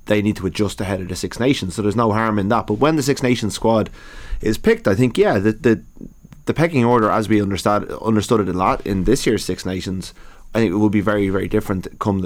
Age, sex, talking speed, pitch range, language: 20-39, male, 255 wpm, 95-110 Hz, English